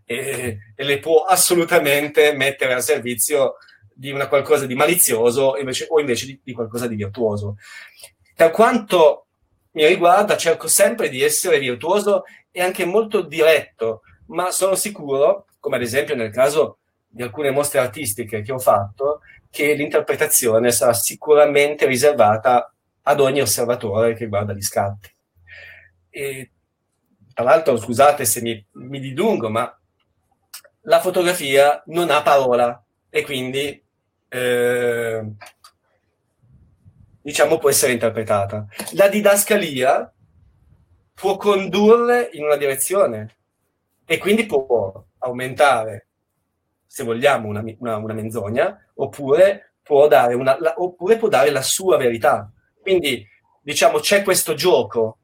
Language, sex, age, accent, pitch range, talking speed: Italian, male, 30-49, native, 110-160 Hz, 125 wpm